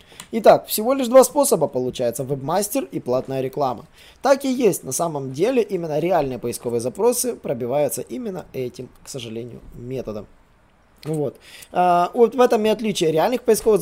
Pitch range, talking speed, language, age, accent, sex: 140-205 Hz, 150 wpm, Russian, 20-39, native, male